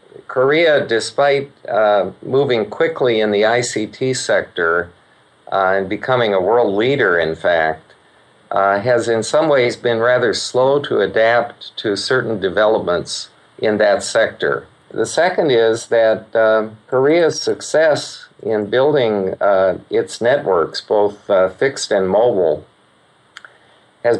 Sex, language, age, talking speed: male, English, 50-69, 125 wpm